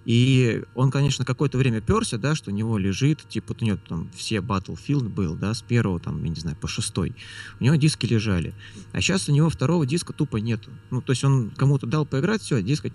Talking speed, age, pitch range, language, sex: 230 wpm, 20-39, 105-135 Hz, Russian, male